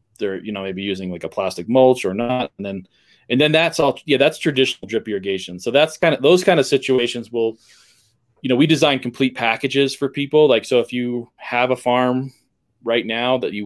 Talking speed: 220 wpm